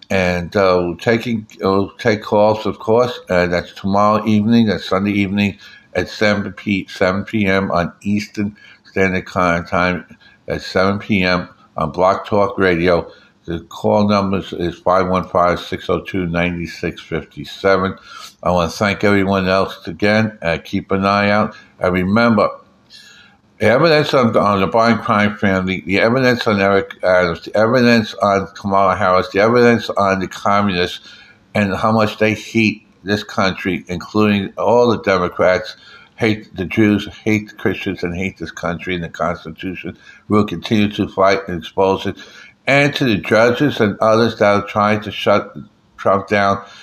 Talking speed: 145 wpm